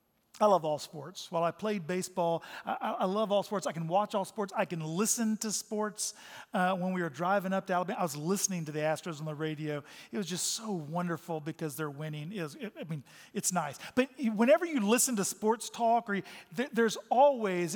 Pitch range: 175-210 Hz